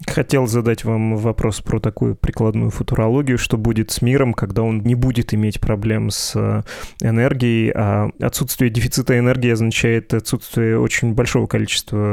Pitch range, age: 110-130 Hz, 20-39